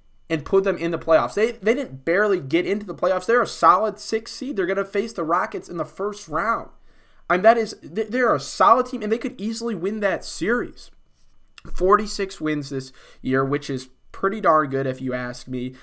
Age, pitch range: 20-39, 135-195 Hz